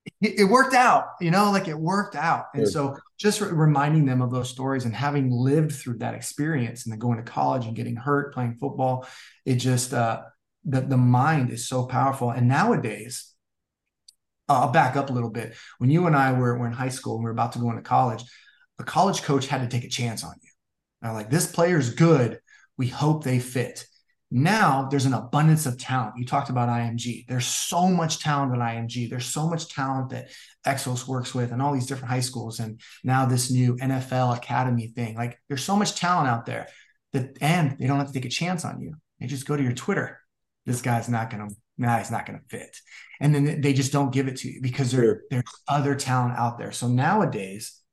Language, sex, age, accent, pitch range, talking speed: English, male, 30-49, American, 120-145 Hz, 220 wpm